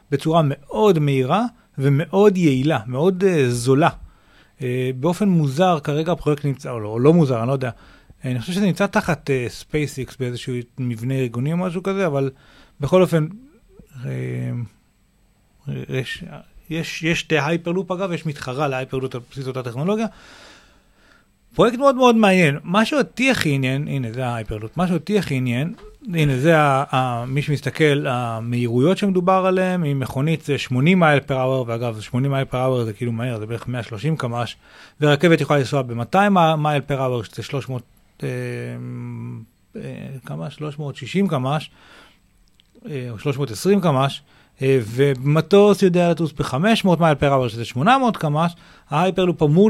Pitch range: 130-170 Hz